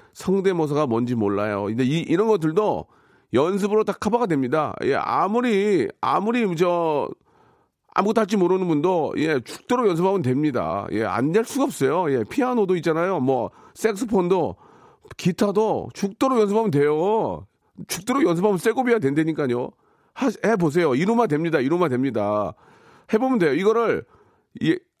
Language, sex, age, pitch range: Korean, male, 40-59, 135-210 Hz